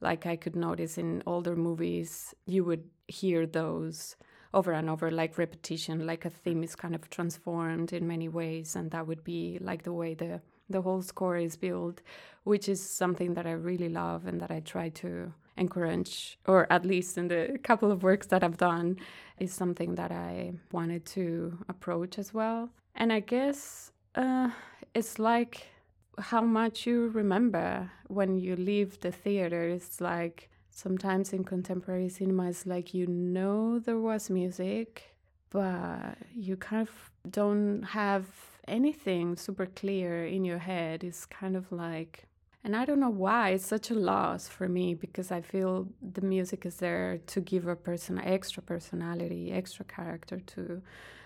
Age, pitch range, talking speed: 20-39, 170-195 Hz, 165 wpm